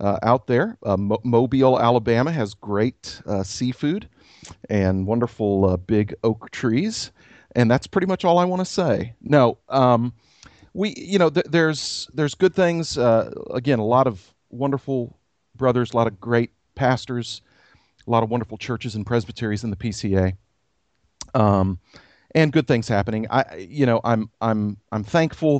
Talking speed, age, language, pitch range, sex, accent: 155 wpm, 40-59, English, 100-125 Hz, male, American